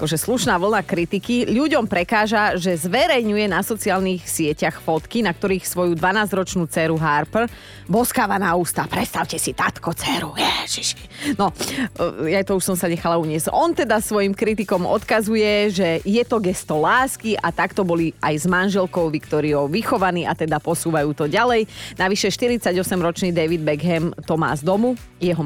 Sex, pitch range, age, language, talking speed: female, 165-210 Hz, 30-49, Slovak, 155 wpm